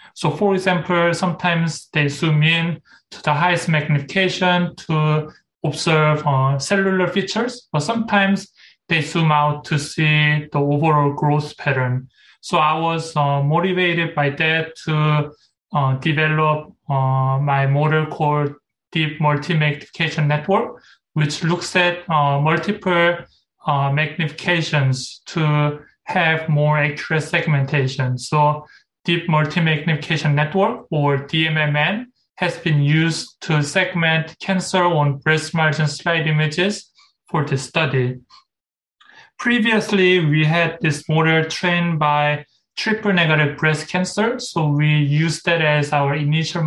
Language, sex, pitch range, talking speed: English, male, 150-175 Hz, 120 wpm